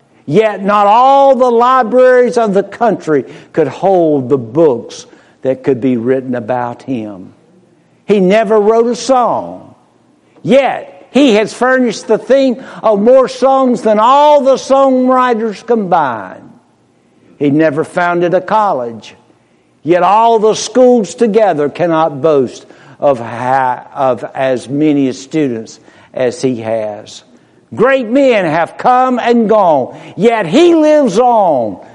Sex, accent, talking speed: male, American, 125 wpm